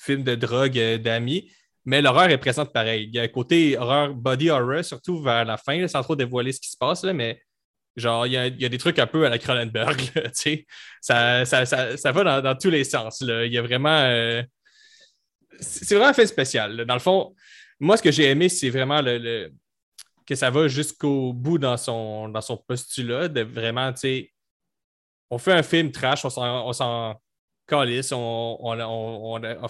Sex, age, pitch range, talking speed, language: male, 20-39, 115-140 Hz, 215 wpm, French